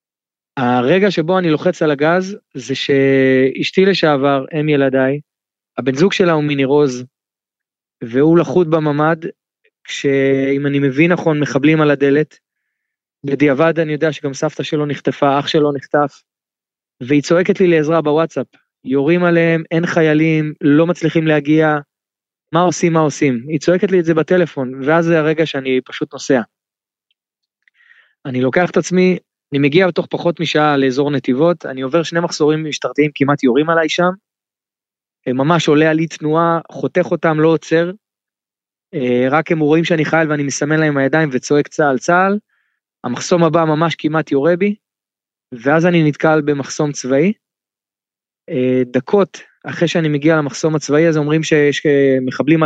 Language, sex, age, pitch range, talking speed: Hebrew, male, 20-39, 140-170 Hz, 140 wpm